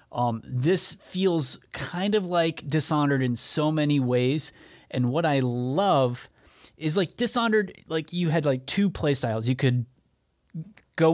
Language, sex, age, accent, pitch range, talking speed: English, male, 30-49, American, 120-150 Hz, 145 wpm